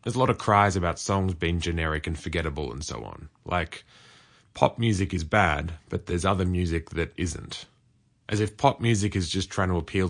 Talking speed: 200 wpm